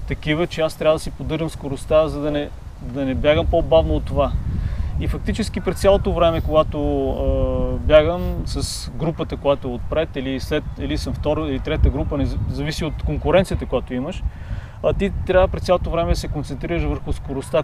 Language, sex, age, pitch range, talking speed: Bulgarian, male, 30-49, 140-175 Hz, 185 wpm